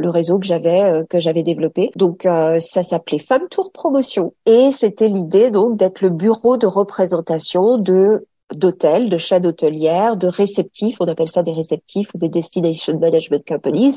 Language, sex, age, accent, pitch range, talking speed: French, female, 40-59, French, 165-205 Hz, 170 wpm